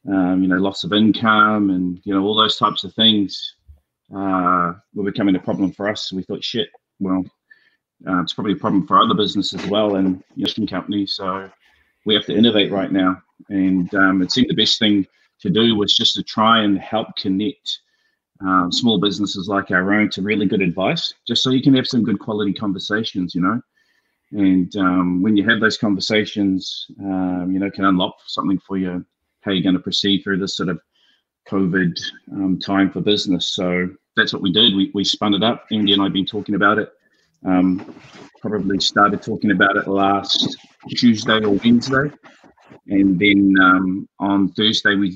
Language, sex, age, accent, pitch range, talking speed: English, male, 30-49, Australian, 95-110 Hz, 195 wpm